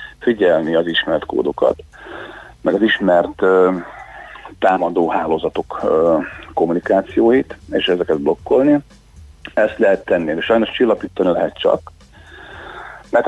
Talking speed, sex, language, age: 110 wpm, male, Hungarian, 40-59